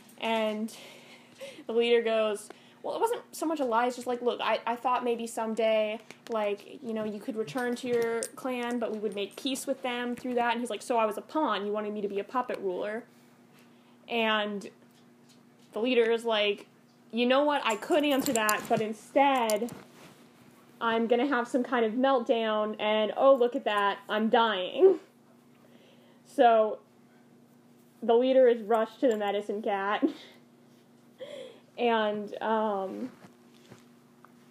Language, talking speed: English, 160 wpm